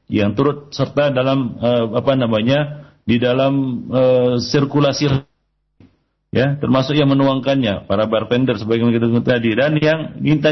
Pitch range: 100-140 Hz